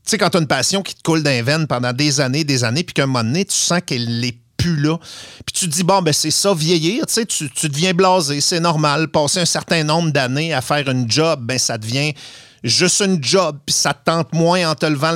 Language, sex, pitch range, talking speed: French, male, 125-160 Hz, 260 wpm